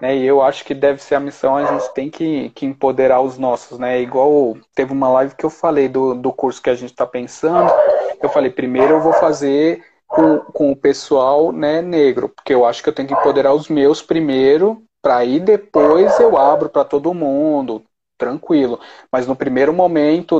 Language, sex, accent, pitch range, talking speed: Portuguese, male, Brazilian, 135-170 Hz, 200 wpm